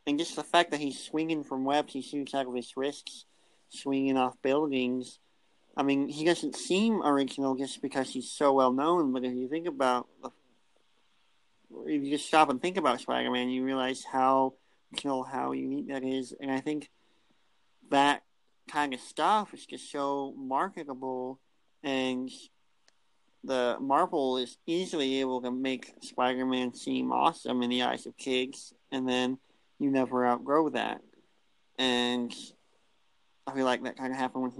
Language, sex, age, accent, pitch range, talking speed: English, male, 40-59, American, 125-140 Hz, 160 wpm